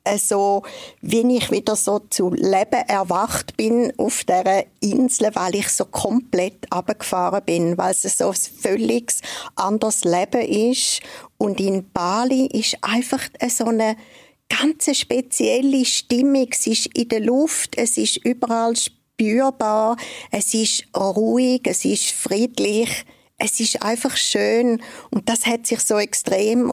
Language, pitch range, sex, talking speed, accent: German, 200-250 Hz, female, 140 wpm, Swiss